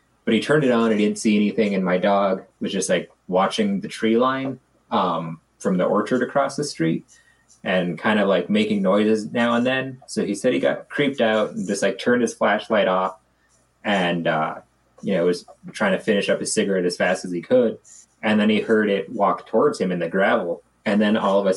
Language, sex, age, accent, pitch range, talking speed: English, male, 20-39, American, 95-130 Hz, 225 wpm